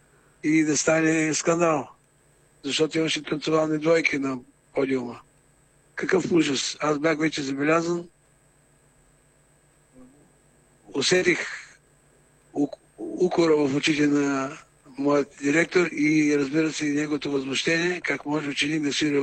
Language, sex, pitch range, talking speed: Bulgarian, male, 145-170 Hz, 110 wpm